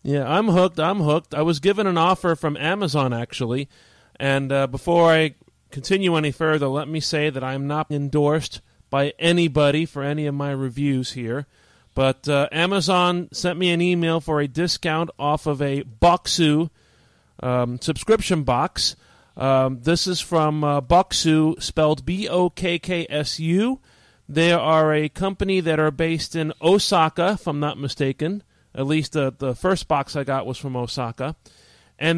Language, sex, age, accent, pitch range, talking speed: English, male, 40-59, American, 135-175 Hz, 160 wpm